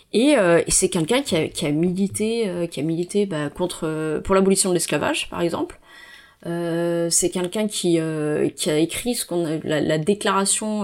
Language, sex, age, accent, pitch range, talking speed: French, female, 30-49, French, 160-195 Hz, 210 wpm